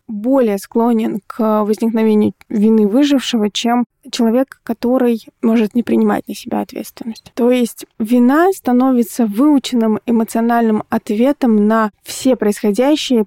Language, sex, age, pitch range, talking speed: Russian, female, 20-39, 215-250 Hz, 115 wpm